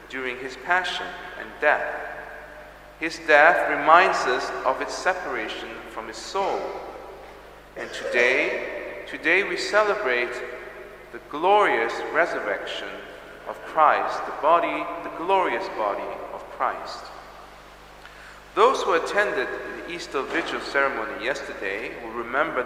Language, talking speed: English, 110 wpm